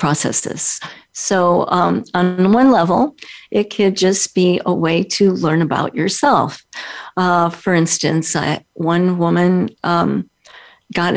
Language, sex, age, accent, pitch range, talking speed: English, female, 50-69, American, 170-215 Hz, 125 wpm